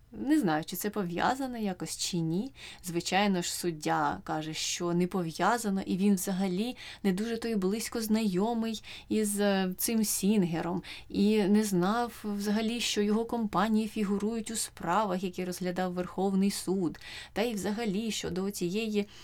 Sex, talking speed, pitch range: female, 145 wpm, 180-220 Hz